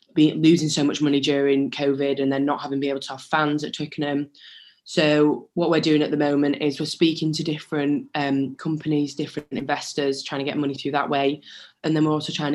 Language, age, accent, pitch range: English, 10-29, British, 140-155 Hz